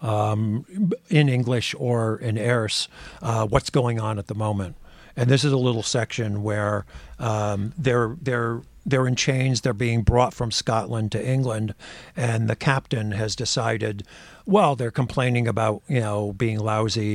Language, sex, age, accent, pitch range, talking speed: English, male, 50-69, American, 105-130 Hz, 160 wpm